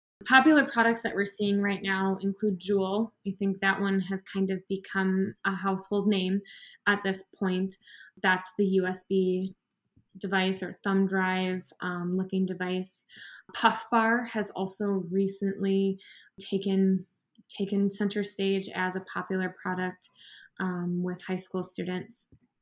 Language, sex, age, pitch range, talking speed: English, female, 20-39, 190-205 Hz, 135 wpm